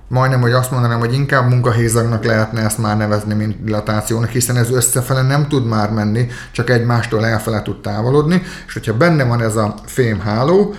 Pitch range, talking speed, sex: 105-130 Hz, 180 wpm, male